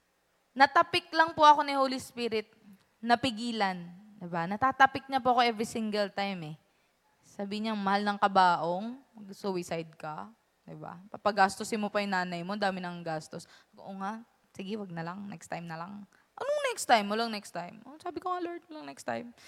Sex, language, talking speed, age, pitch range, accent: female, English, 175 wpm, 20-39, 200-290 Hz, Filipino